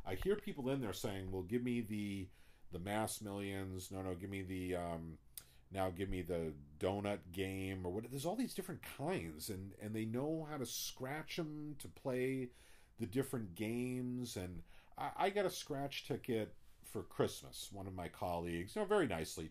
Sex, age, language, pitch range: male, 40-59, English, 90-120 Hz